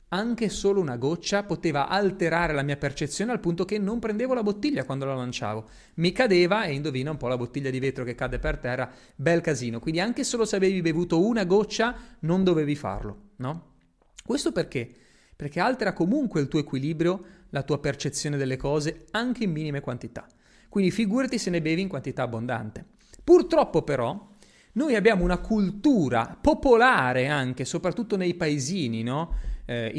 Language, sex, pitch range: Italian, male, 145-230 Hz